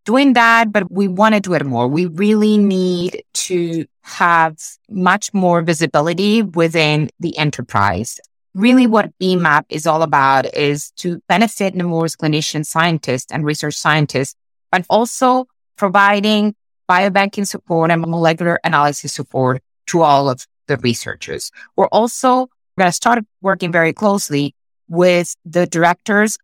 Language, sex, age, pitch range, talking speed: English, female, 30-49, 155-200 Hz, 135 wpm